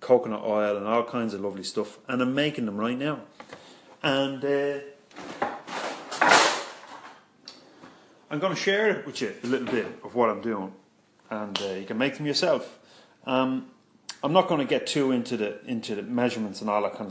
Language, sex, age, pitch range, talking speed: English, male, 30-49, 115-150 Hz, 185 wpm